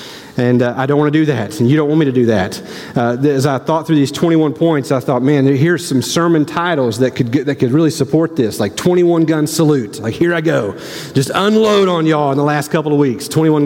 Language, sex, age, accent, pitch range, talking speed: English, male, 30-49, American, 130-165 Hz, 245 wpm